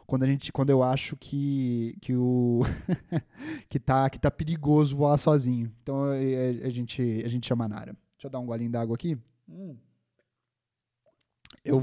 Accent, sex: Brazilian, male